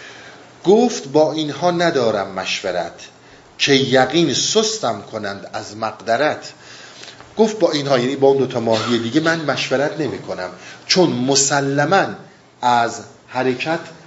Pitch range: 115-150 Hz